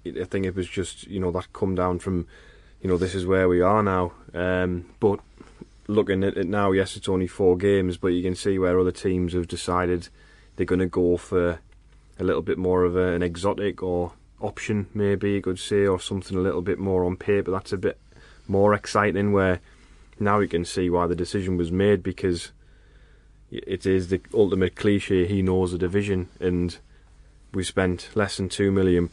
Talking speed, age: 200 wpm, 20-39